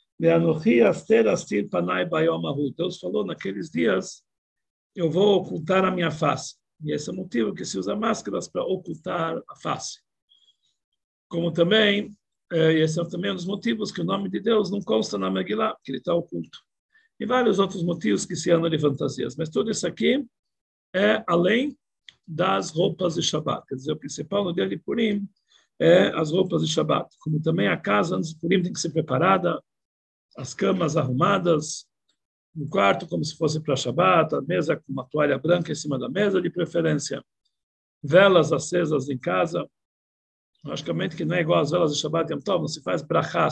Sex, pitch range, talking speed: male, 150-185 Hz, 180 wpm